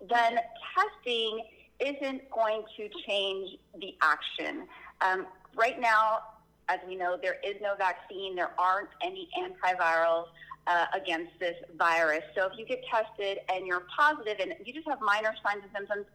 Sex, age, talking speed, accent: female, 30-49, 155 wpm, American